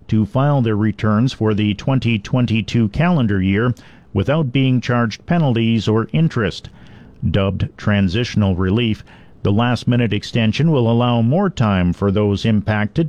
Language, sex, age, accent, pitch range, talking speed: English, male, 50-69, American, 105-125 Hz, 130 wpm